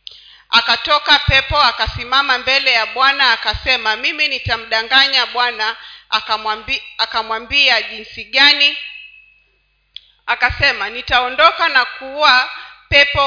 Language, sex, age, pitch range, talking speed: Swahili, female, 40-59, 225-280 Hz, 85 wpm